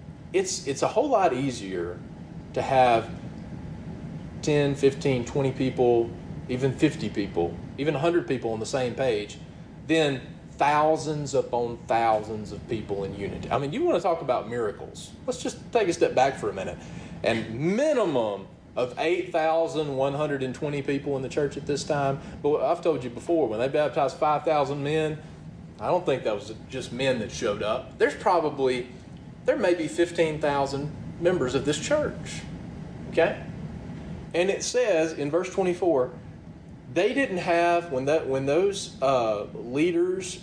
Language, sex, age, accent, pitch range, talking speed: English, male, 40-59, American, 130-170 Hz, 155 wpm